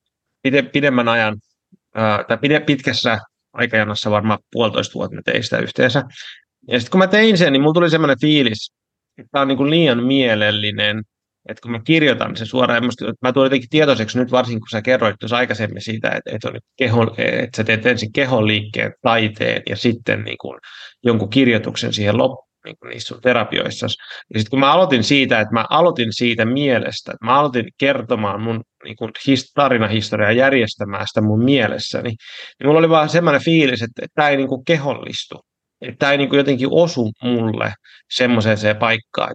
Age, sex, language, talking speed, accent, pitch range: 30-49, male, Finnish, 175 wpm, native, 110-140 Hz